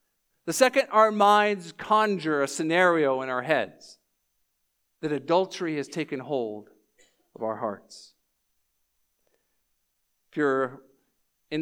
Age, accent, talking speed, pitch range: 50-69, American, 110 wpm, 135-190 Hz